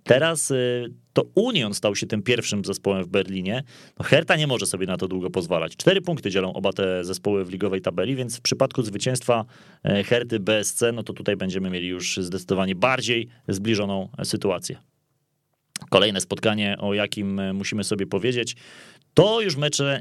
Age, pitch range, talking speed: 30-49, 105-140 Hz, 160 wpm